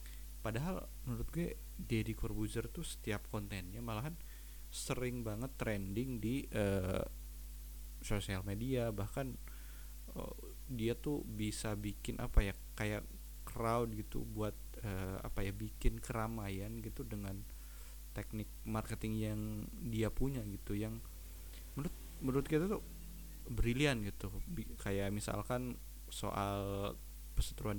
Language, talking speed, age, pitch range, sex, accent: Indonesian, 115 wpm, 20-39, 90-115 Hz, male, native